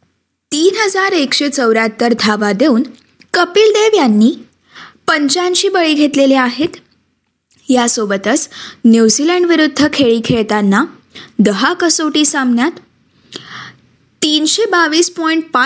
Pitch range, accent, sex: 230-320 Hz, native, female